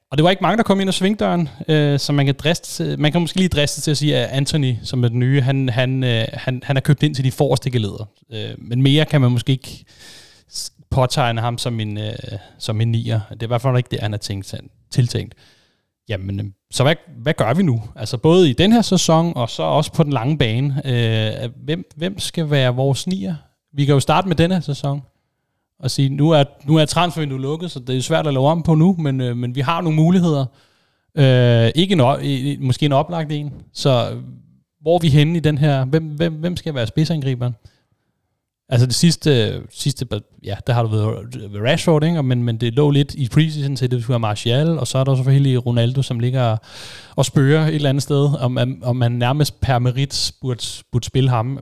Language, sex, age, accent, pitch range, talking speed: Danish, male, 30-49, native, 120-155 Hz, 225 wpm